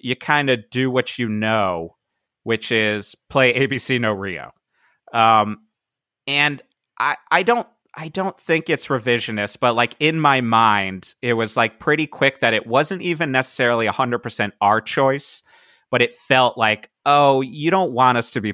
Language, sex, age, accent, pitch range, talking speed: English, male, 30-49, American, 110-145 Hz, 170 wpm